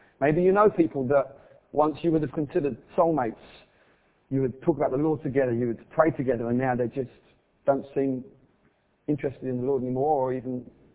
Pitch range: 130-165 Hz